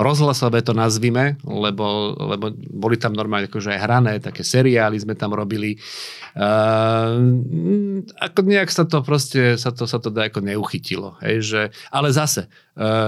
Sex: male